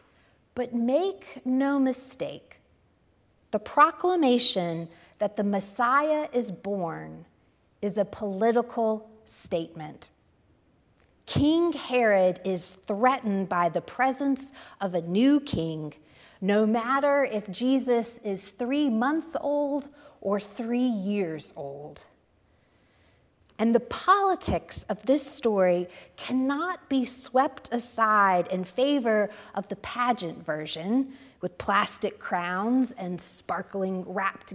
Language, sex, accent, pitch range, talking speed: English, female, American, 185-260 Hz, 105 wpm